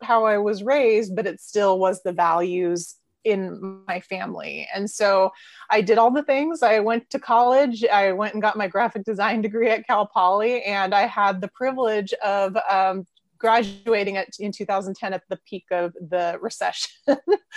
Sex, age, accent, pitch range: female, 20-39, American, 180-220 Hz